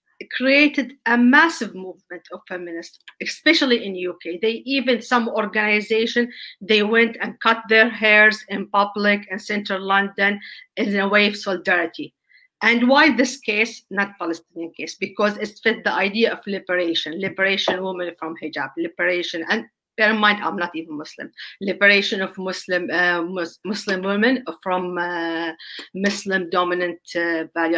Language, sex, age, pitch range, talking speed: English, female, 40-59, 180-225 Hz, 145 wpm